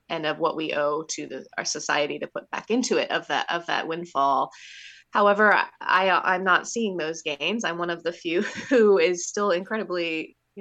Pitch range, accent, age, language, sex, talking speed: 165-205 Hz, American, 20-39, English, female, 185 wpm